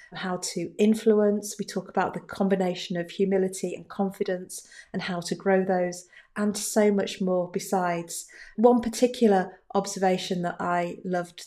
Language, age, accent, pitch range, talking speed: English, 40-59, British, 180-210 Hz, 145 wpm